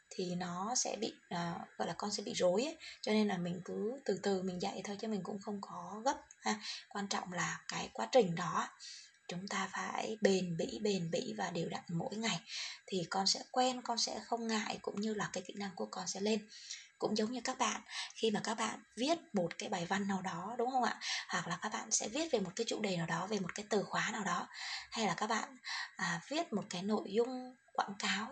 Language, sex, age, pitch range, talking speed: Vietnamese, female, 20-39, 190-245 Hz, 250 wpm